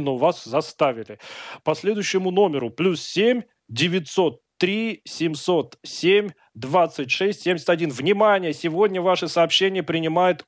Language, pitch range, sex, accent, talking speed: Russian, 140-185 Hz, male, native, 95 wpm